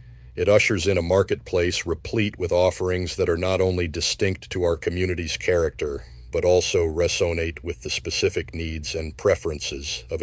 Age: 50-69